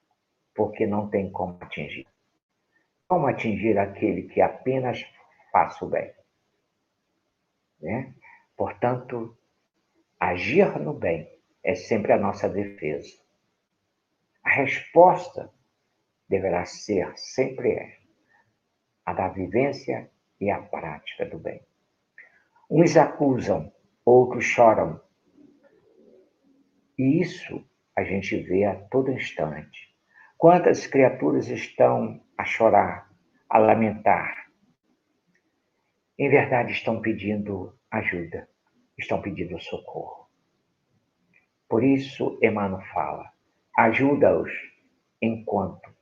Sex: male